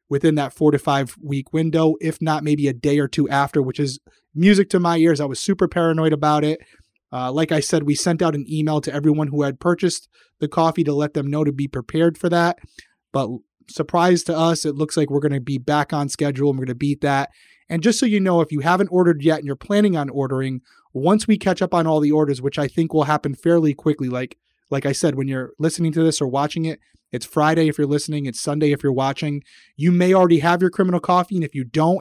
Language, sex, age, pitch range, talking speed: English, male, 20-39, 140-170 Hz, 255 wpm